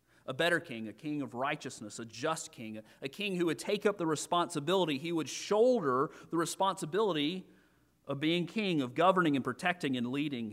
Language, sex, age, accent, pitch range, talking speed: English, male, 40-59, American, 125-200 Hz, 180 wpm